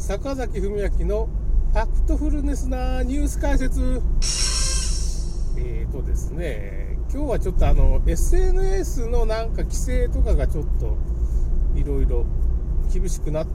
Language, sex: Japanese, male